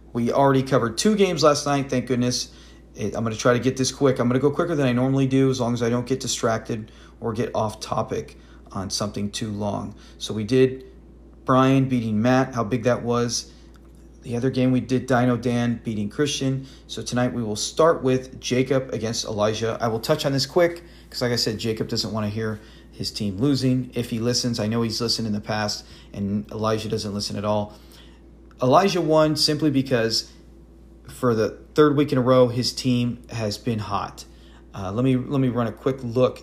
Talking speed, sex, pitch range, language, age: 210 wpm, male, 105-135 Hz, English, 40-59